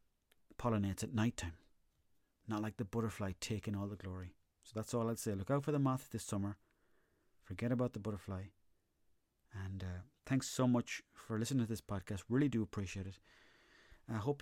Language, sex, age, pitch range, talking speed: English, male, 30-49, 100-115 Hz, 185 wpm